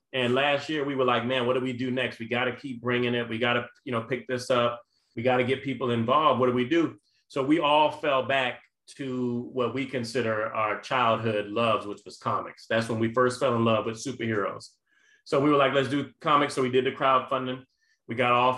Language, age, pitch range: English, 30-49, 120-135 Hz